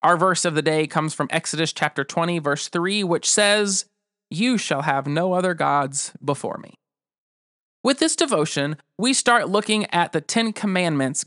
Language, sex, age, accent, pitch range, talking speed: English, male, 30-49, American, 160-220 Hz, 170 wpm